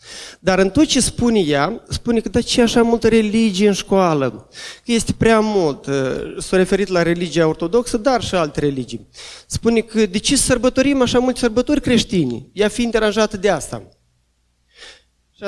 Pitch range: 165-235 Hz